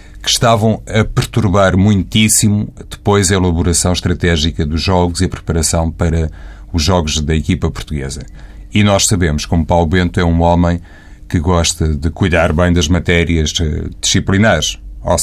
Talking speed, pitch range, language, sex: 155 wpm, 80-100 Hz, Portuguese, male